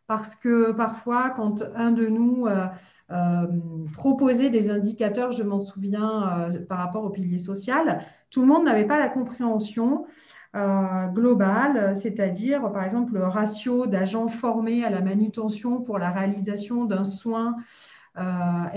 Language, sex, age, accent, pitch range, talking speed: French, female, 40-59, French, 200-255 Hz, 145 wpm